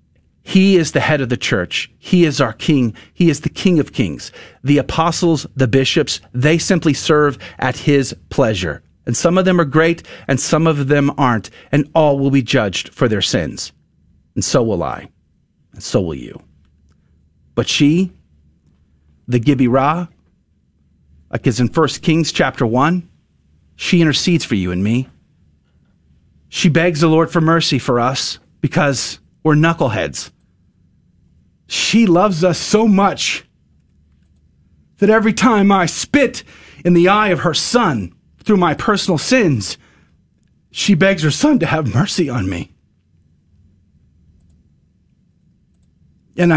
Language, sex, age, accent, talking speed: English, male, 40-59, American, 145 wpm